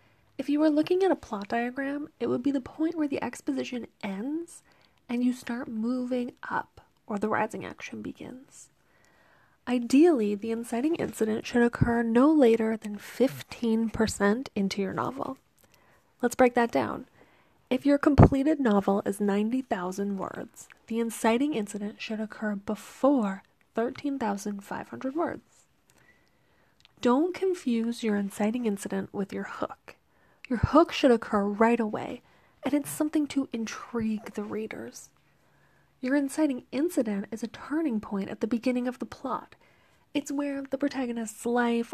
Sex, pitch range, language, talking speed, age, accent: female, 220-280 Hz, English, 140 wpm, 20-39, American